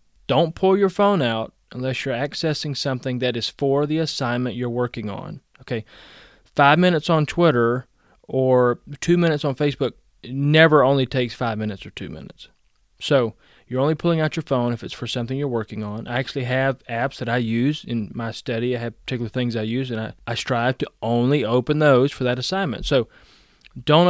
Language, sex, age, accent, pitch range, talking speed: English, male, 30-49, American, 120-150 Hz, 195 wpm